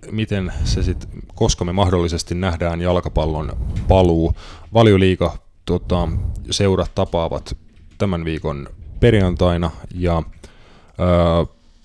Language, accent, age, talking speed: Finnish, native, 30-49, 90 wpm